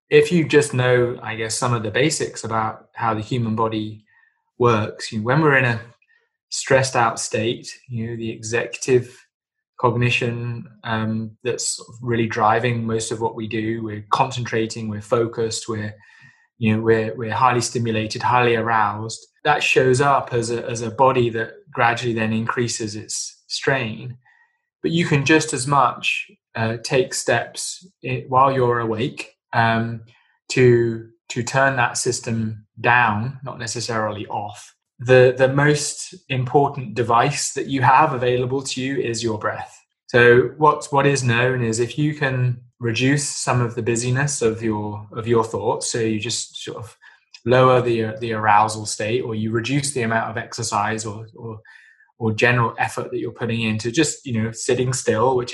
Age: 20-39